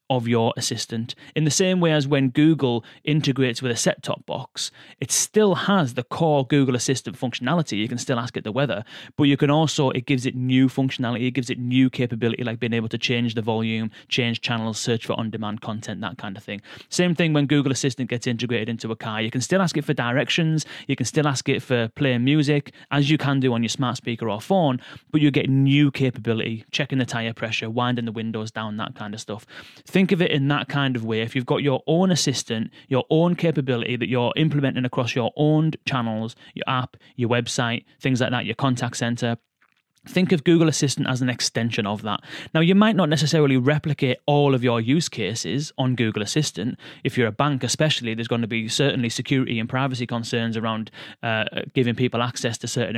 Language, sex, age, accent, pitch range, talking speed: English, male, 30-49, British, 115-150 Hz, 220 wpm